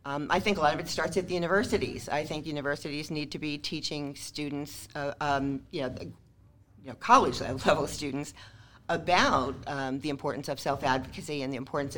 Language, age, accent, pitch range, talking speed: English, 50-69, American, 130-155 Hz, 180 wpm